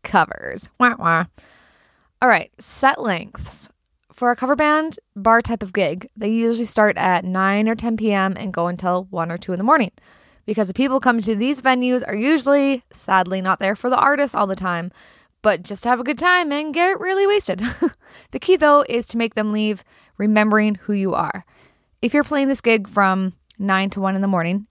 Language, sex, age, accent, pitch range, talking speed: English, female, 20-39, American, 195-255 Hz, 200 wpm